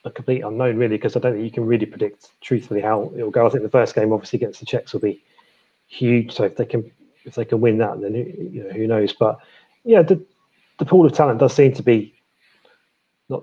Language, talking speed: English, 245 wpm